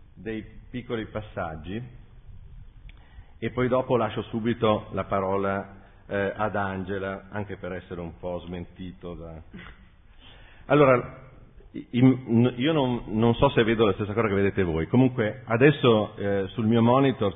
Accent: native